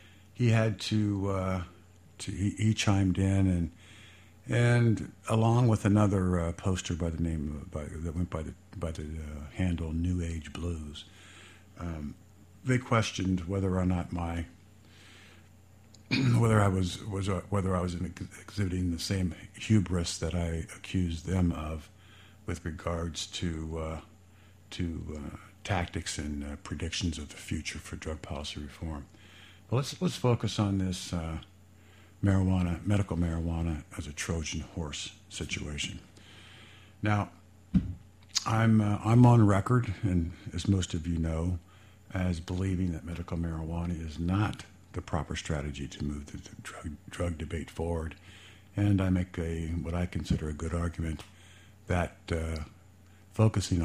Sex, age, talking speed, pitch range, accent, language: male, 60-79, 145 wpm, 85-100 Hz, American, English